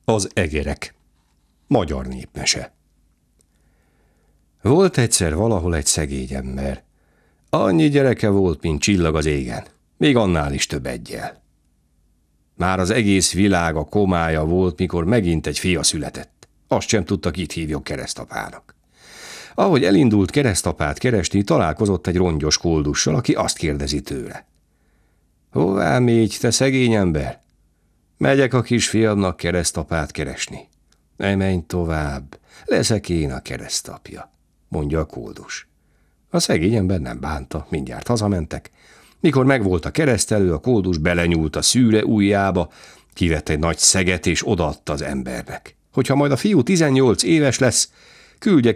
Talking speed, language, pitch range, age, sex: 130 wpm, Hungarian, 75-105 Hz, 60-79, male